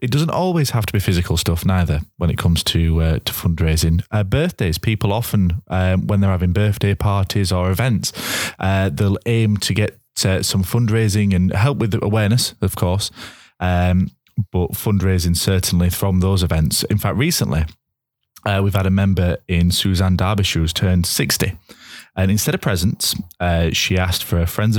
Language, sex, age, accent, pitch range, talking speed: English, male, 20-39, British, 90-105 Hz, 180 wpm